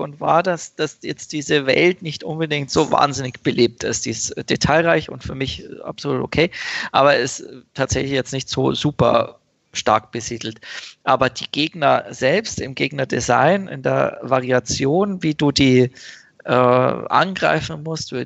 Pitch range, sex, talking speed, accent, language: 130-155 Hz, male, 150 wpm, German, German